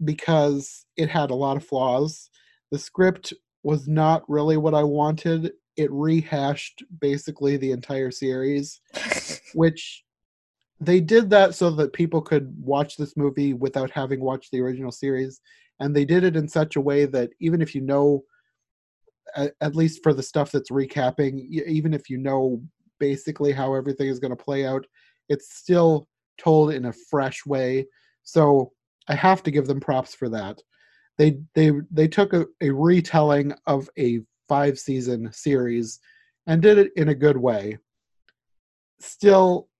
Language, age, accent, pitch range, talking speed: English, 30-49, American, 135-160 Hz, 160 wpm